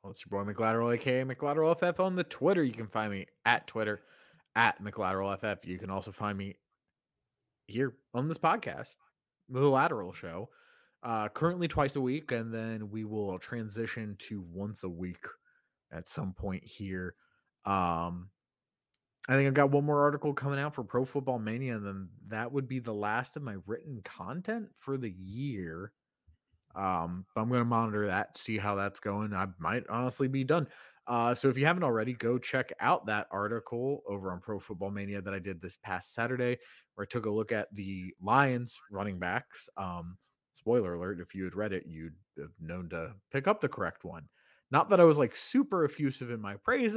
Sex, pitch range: male, 100-135 Hz